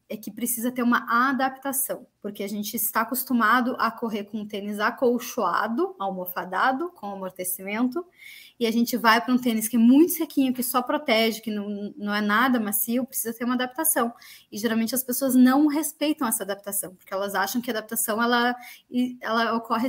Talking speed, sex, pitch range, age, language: 180 wpm, female, 215-255 Hz, 20-39, Portuguese